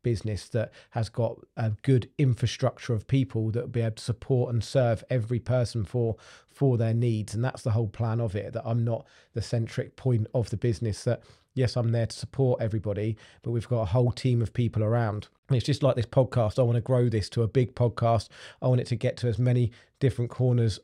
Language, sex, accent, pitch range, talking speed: English, male, British, 110-130 Hz, 230 wpm